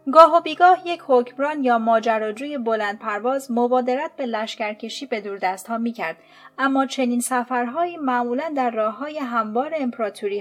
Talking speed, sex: 155 wpm, female